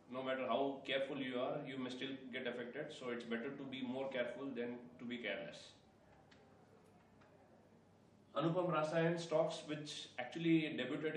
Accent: Indian